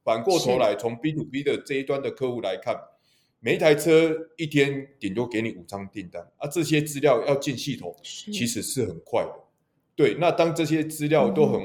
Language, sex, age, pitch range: Chinese, male, 20-39, 110-160 Hz